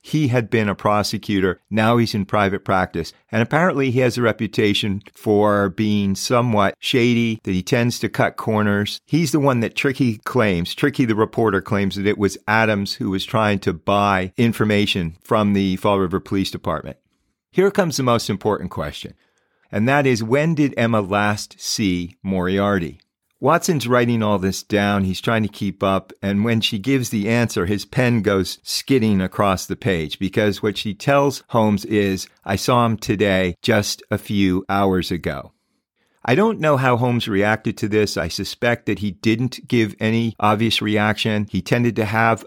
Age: 40-59